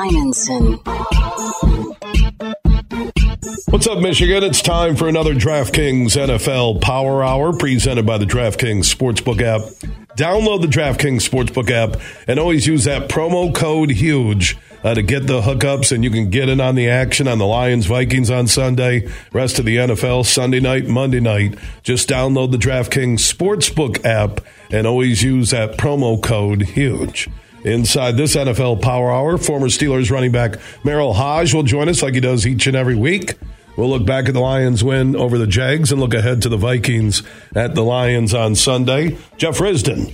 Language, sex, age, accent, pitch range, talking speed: English, male, 50-69, American, 115-140 Hz, 165 wpm